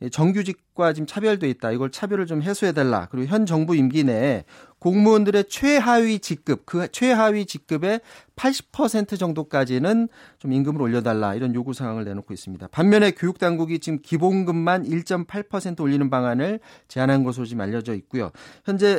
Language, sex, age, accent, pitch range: Korean, male, 30-49, native, 130-195 Hz